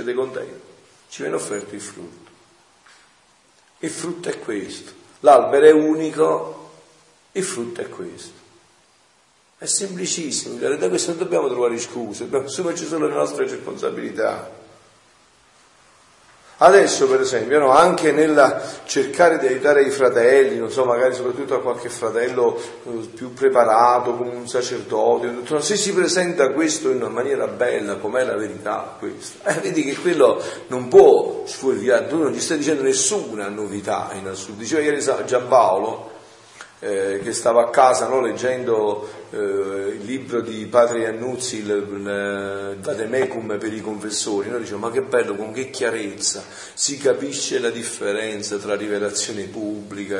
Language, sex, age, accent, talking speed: Italian, male, 50-69, native, 140 wpm